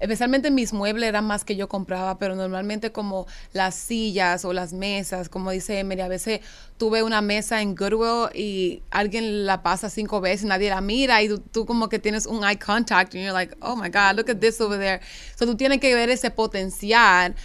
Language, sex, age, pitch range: Spanish, female, 20-39, 195-230 Hz